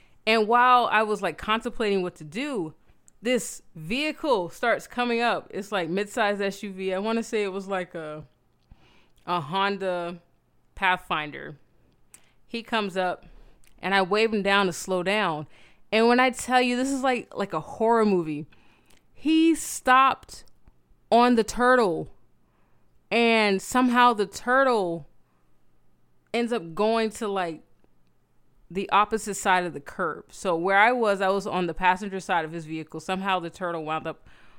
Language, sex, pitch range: English, female, 165-230 Hz